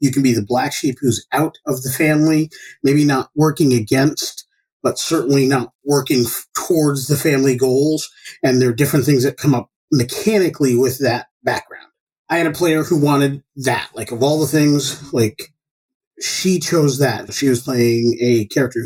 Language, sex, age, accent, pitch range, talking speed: English, male, 30-49, American, 120-145 Hz, 180 wpm